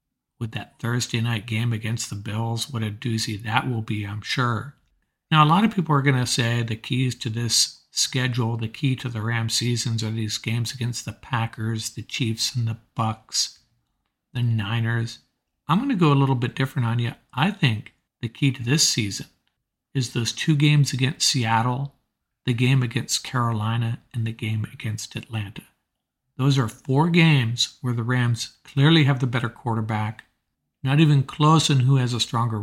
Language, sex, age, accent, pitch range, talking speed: English, male, 50-69, American, 115-135 Hz, 185 wpm